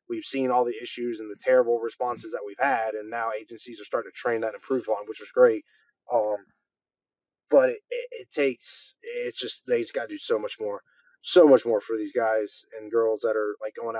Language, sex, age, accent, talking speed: English, male, 20-39, American, 230 wpm